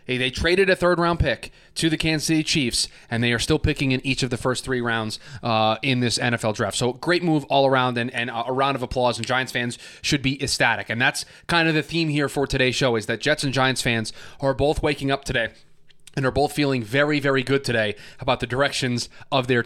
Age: 20-39